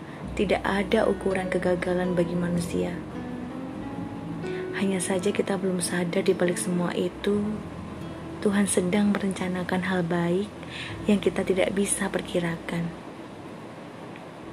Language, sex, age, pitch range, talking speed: Indonesian, female, 20-39, 175-205 Hz, 100 wpm